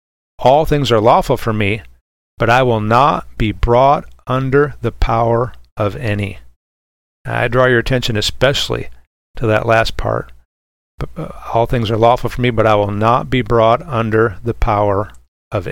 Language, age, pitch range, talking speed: English, 40-59, 95-125 Hz, 160 wpm